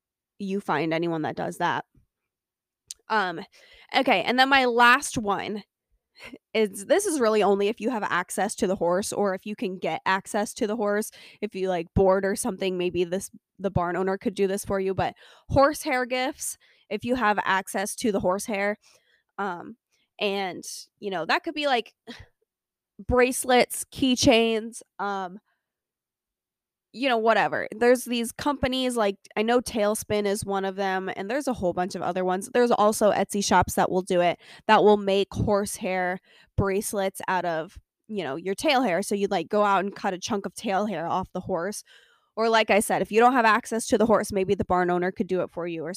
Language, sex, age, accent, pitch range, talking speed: English, female, 20-39, American, 190-240 Hz, 195 wpm